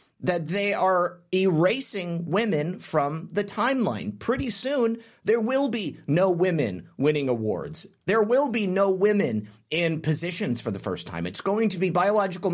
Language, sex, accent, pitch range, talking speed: English, male, American, 155-210 Hz, 160 wpm